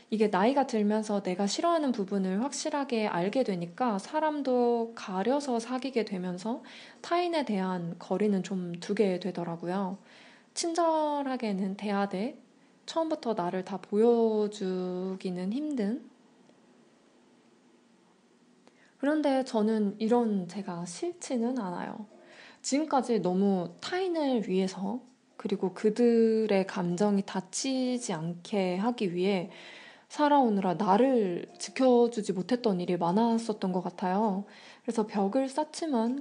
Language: Korean